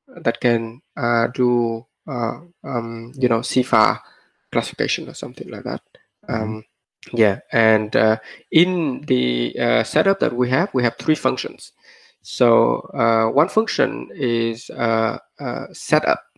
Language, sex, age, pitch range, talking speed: English, male, 20-39, 115-140 Hz, 135 wpm